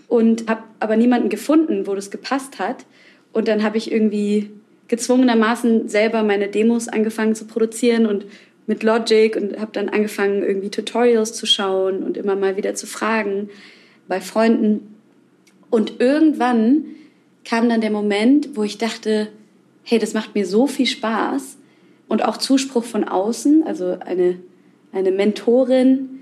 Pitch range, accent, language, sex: 200-250 Hz, German, German, female